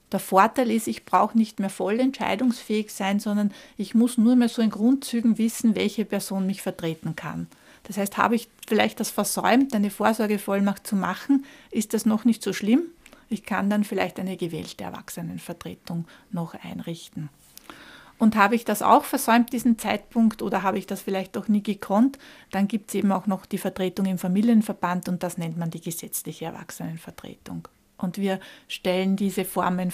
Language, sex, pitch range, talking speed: German, female, 190-225 Hz, 175 wpm